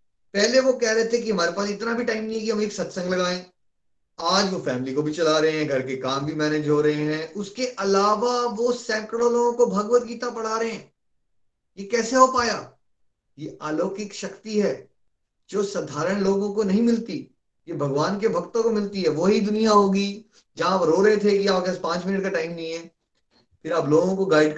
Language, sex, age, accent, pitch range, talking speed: Hindi, male, 30-49, native, 150-215 Hz, 210 wpm